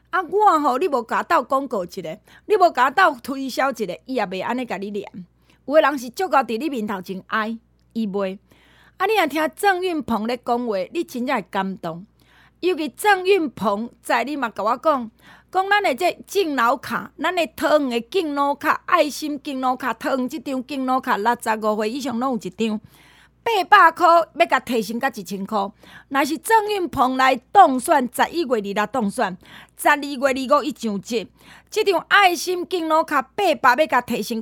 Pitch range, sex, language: 230-325 Hz, female, Chinese